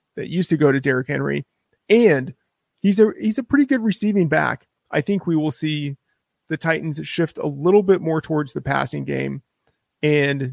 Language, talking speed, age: English, 190 wpm, 30-49